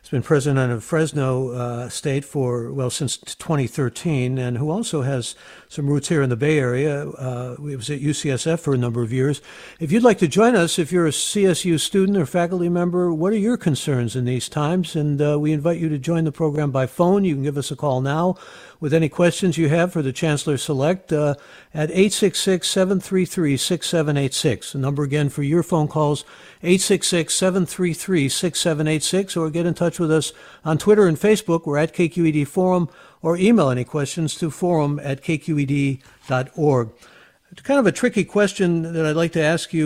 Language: English